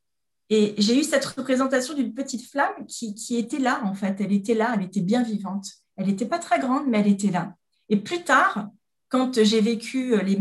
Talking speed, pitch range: 215 wpm, 210-265 Hz